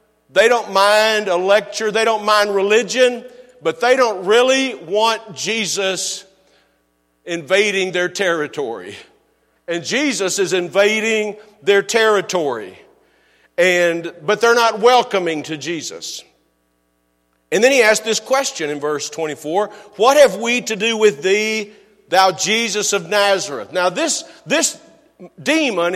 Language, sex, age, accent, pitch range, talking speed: English, male, 50-69, American, 175-230 Hz, 125 wpm